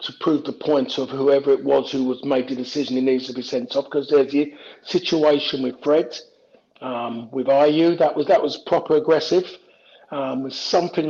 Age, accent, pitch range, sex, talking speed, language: 50-69, British, 145-170 Hz, male, 200 wpm, English